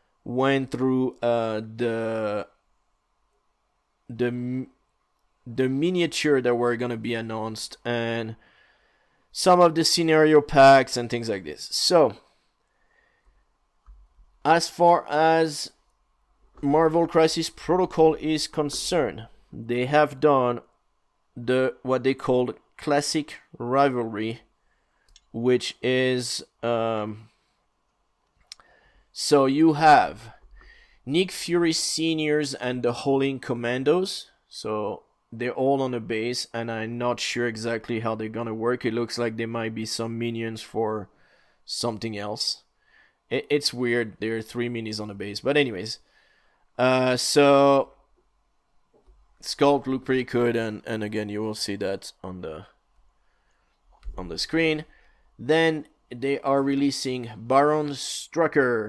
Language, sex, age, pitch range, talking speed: English, male, 30-49, 115-145 Hz, 115 wpm